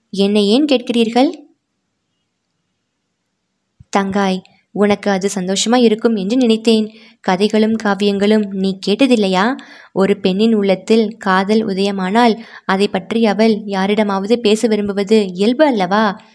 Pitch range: 200-230 Hz